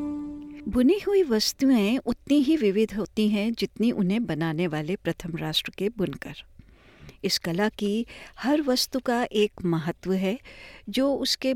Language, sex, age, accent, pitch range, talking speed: Hindi, female, 60-79, native, 180-245 Hz, 140 wpm